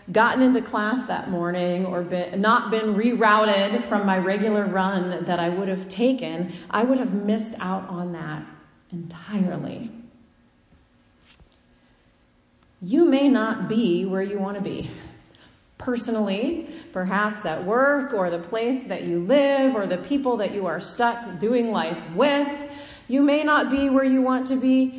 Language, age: English, 30-49